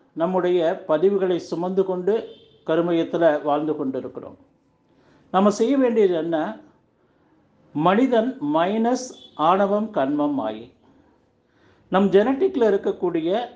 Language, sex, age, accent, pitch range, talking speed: Tamil, male, 50-69, native, 160-225 Hz, 90 wpm